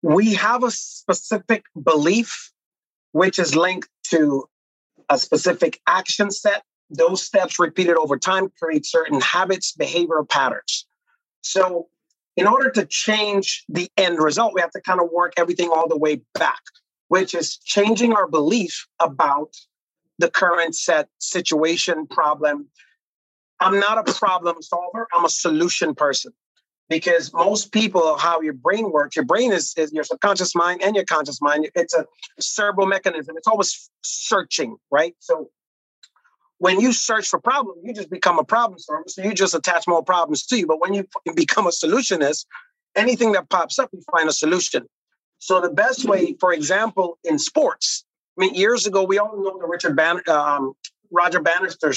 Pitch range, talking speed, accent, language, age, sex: 165-205 Hz, 165 wpm, American, English, 40-59, male